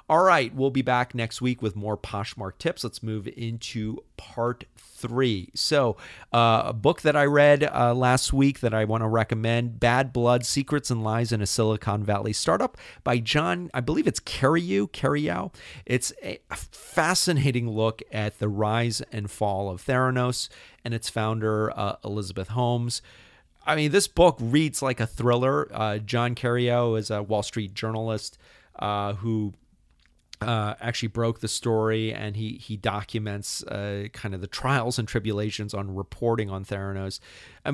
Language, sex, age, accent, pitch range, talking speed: English, male, 40-59, American, 105-125 Hz, 165 wpm